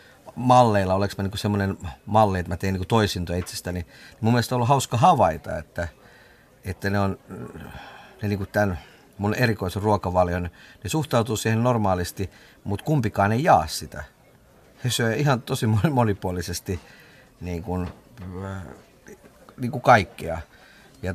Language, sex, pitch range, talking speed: Finnish, male, 90-120 Hz, 135 wpm